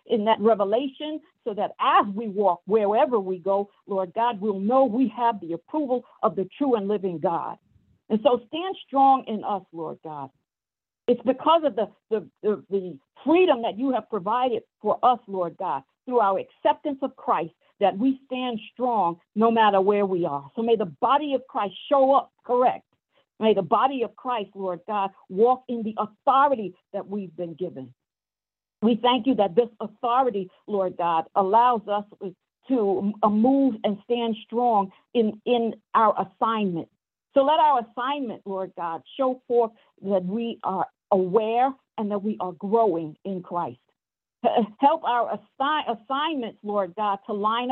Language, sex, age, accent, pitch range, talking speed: English, female, 50-69, American, 195-255 Hz, 165 wpm